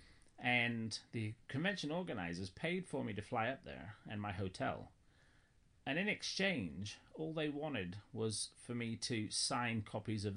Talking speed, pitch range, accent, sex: 155 wpm, 95-140 Hz, British, male